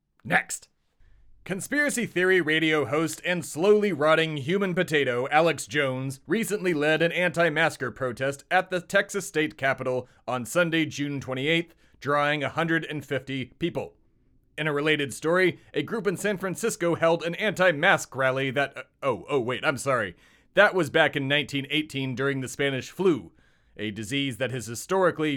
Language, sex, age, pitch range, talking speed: English, male, 30-49, 135-180 Hz, 150 wpm